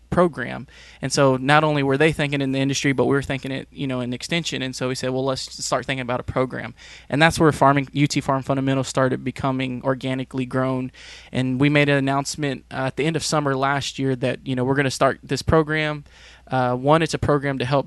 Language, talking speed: English, 240 wpm